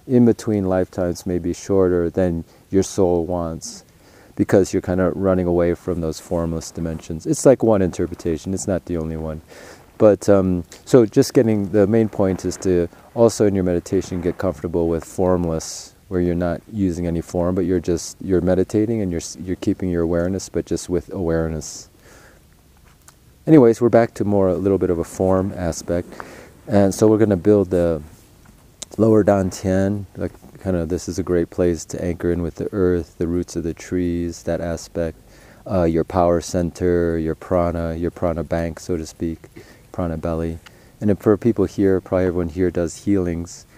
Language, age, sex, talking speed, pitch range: English, 30-49, male, 180 wpm, 85-95 Hz